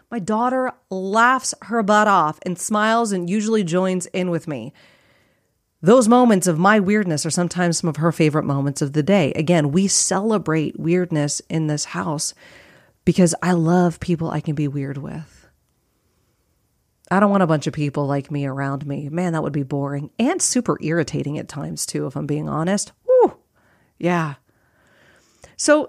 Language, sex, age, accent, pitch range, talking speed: English, female, 40-59, American, 155-215 Hz, 170 wpm